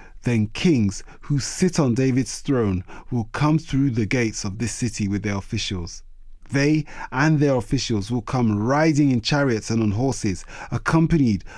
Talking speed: 160 wpm